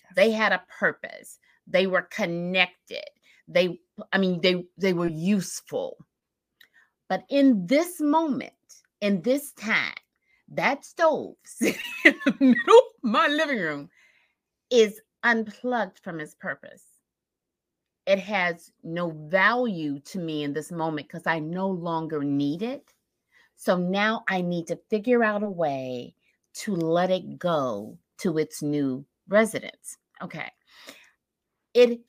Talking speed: 130 wpm